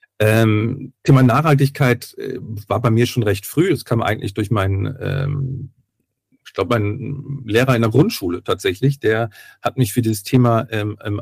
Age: 40-59